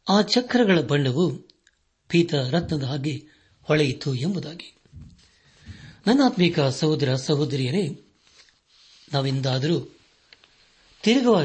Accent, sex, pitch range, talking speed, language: native, male, 135-170 Hz, 70 wpm, Kannada